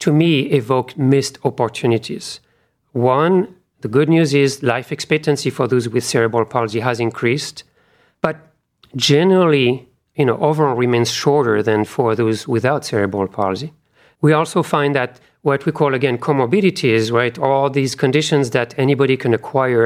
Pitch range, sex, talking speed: 120-145 Hz, male, 150 wpm